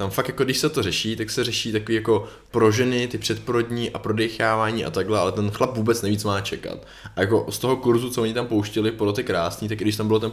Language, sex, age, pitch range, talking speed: Czech, male, 20-39, 100-115 Hz, 260 wpm